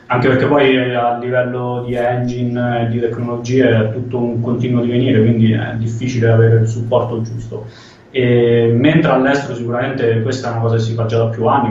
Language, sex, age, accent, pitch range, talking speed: Italian, male, 20-39, native, 115-125 Hz, 190 wpm